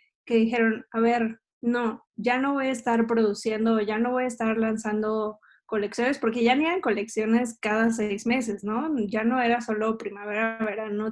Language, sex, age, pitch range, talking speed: Spanish, female, 20-39, 215-235 Hz, 185 wpm